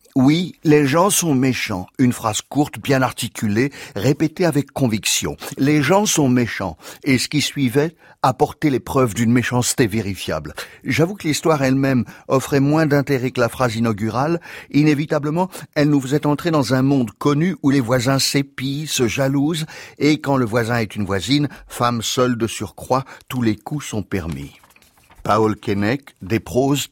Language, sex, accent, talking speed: French, male, French, 170 wpm